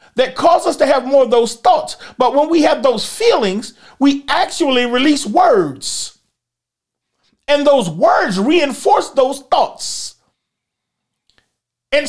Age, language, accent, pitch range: 40-59, English, American, 210-300 Hz